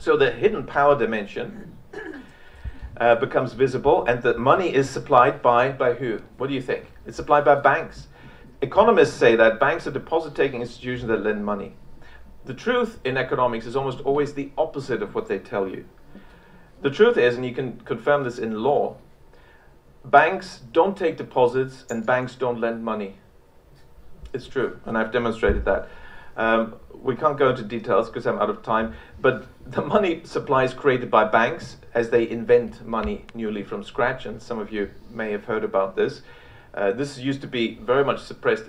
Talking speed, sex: 180 wpm, male